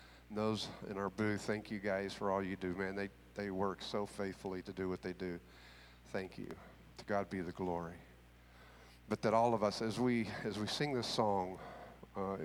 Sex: male